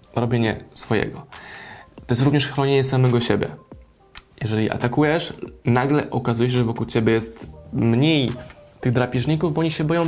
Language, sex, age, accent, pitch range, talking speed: Polish, male, 20-39, native, 115-135 Hz, 145 wpm